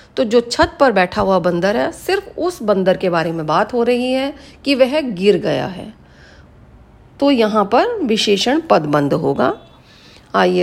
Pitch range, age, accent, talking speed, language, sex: 195-275 Hz, 40-59, native, 170 wpm, Hindi, female